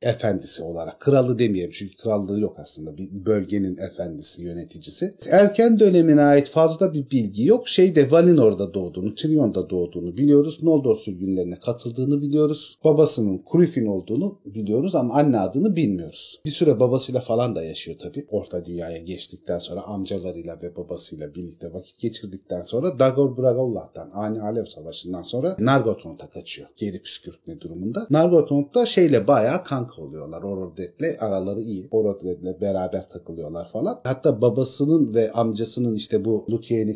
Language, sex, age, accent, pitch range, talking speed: Turkish, male, 40-59, native, 100-145 Hz, 140 wpm